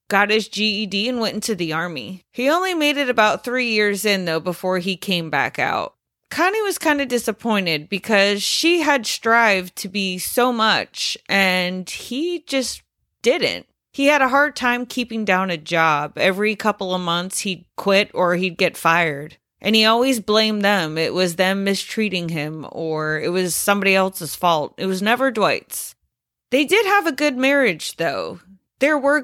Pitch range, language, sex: 180-240 Hz, English, female